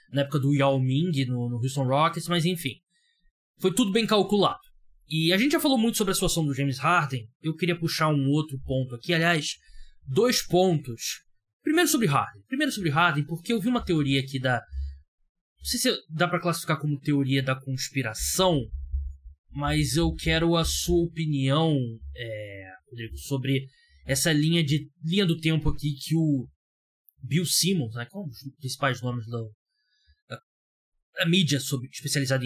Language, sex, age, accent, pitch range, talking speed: Portuguese, male, 20-39, Brazilian, 130-175 Hz, 170 wpm